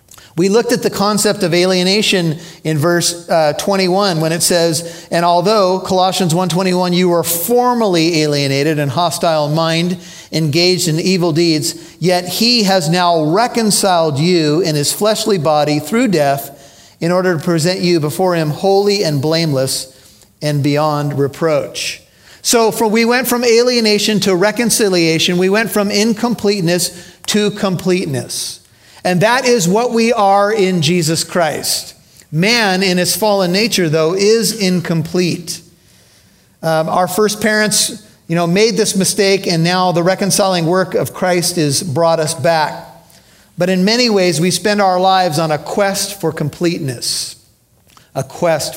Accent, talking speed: American, 145 wpm